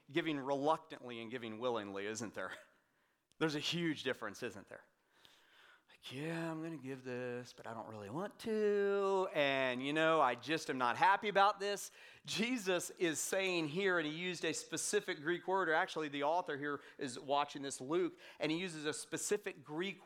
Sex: male